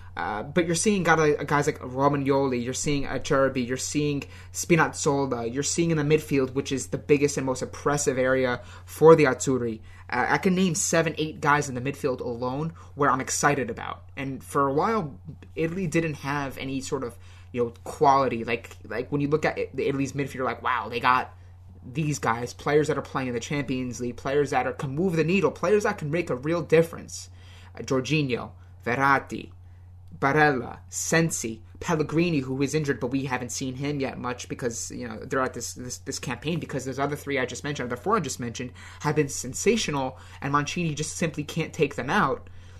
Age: 20-39